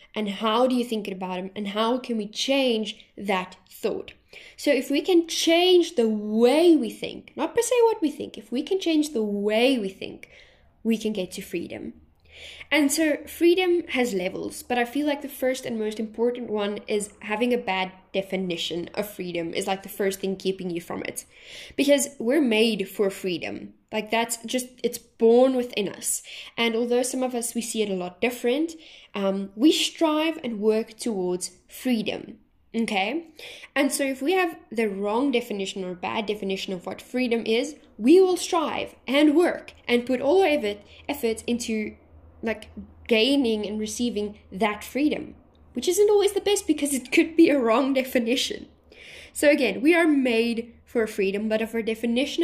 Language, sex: English, female